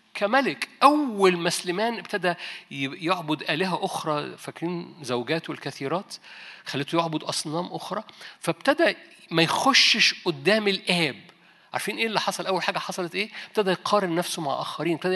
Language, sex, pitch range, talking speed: Arabic, male, 150-205 Hz, 130 wpm